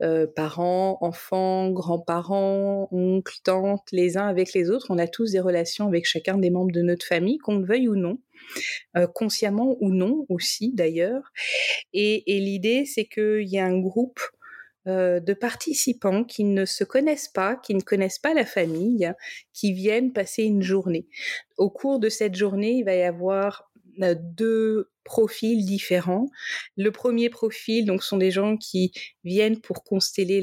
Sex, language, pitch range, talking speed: female, French, 180-215 Hz, 170 wpm